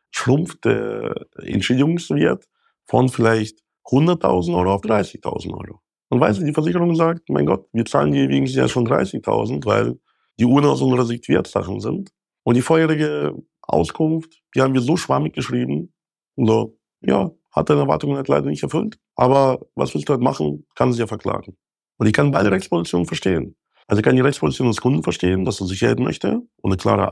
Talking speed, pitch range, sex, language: 180 wpm, 100-130 Hz, male, German